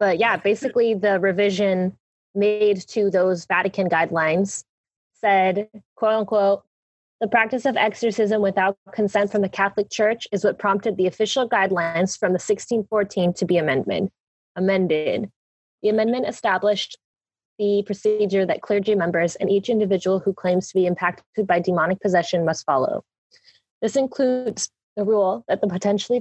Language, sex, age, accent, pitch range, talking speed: English, female, 20-39, American, 180-210 Hz, 145 wpm